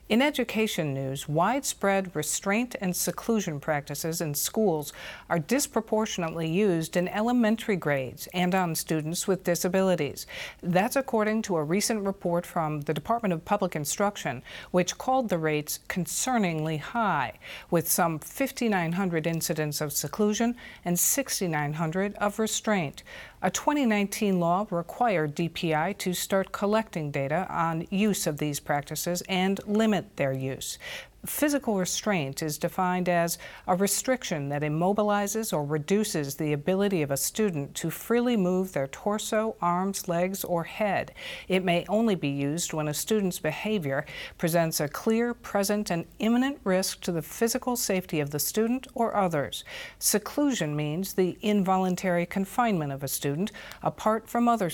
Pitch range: 160-215 Hz